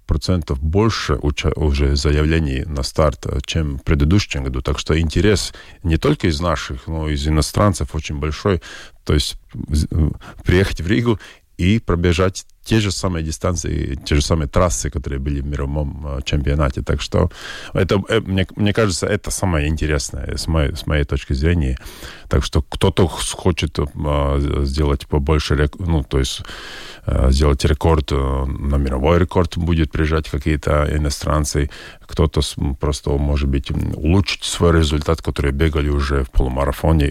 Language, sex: Russian, male